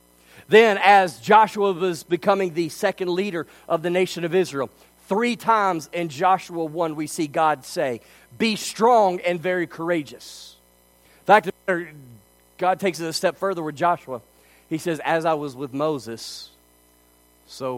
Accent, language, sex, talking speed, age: American, English, male, 150 wpm, 40-59